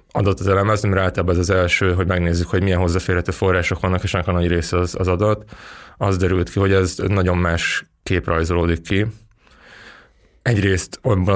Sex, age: male, 20-39